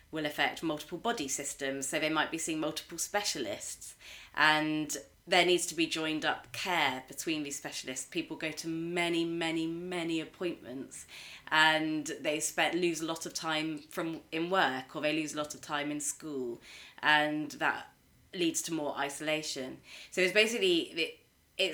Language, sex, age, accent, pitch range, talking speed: English, female, 30-49, British, 140-165 Hz, 165 wpm